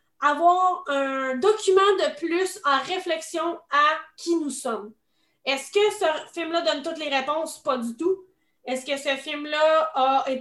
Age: 20-39